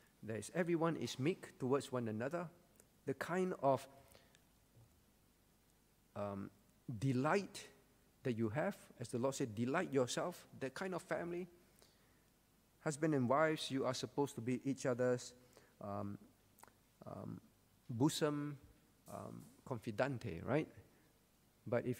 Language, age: English, 50-69